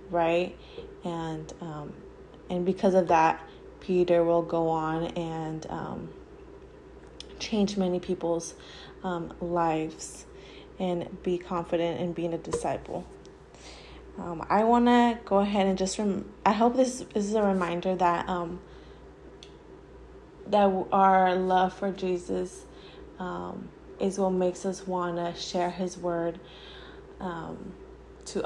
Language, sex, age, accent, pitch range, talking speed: English, female, 20-39, American, 175-195 Hz, 120 wpm